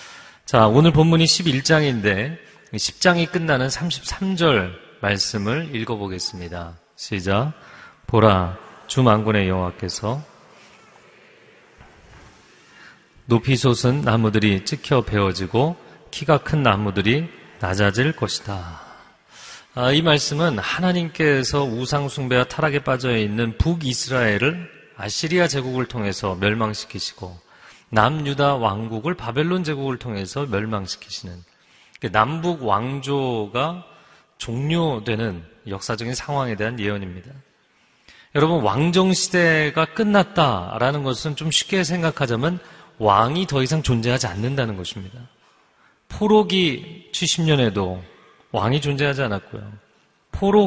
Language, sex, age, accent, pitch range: Korean, male, 30-49, native, 105-155 Hz